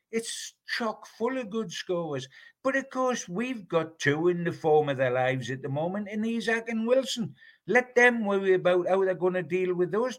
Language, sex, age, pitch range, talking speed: English, male, 60-79, 125-185 Hz, 210 wpm